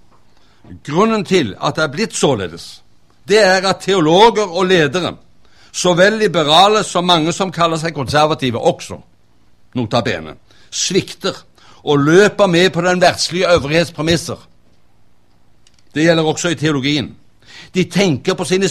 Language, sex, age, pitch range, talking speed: Danish, male, 60-79, 130-185 Hz, 130 wpm